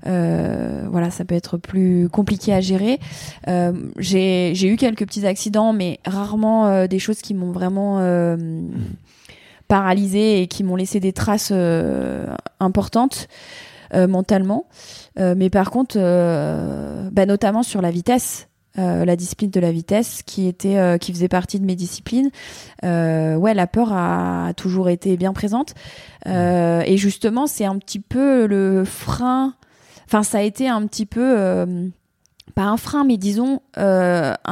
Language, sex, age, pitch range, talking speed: French, female, 20-39, 180-220 Hz, 160 wpm